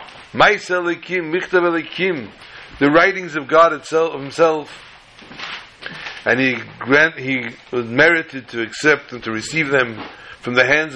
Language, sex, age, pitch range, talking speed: English, male, 60-79, 130-160 Hz, 125 wpm